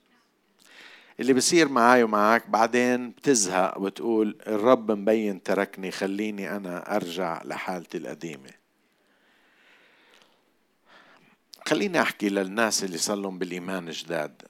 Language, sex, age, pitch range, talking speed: Arabic, male, 50-69, 105-150 Hz, 90 wpm